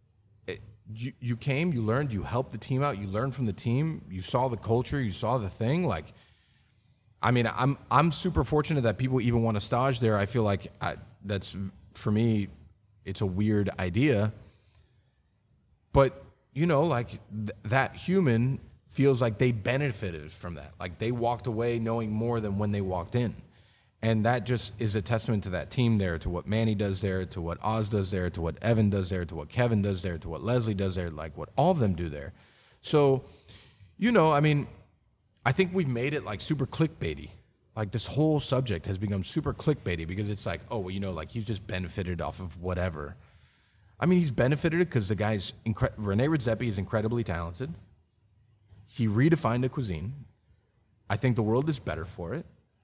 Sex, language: male, English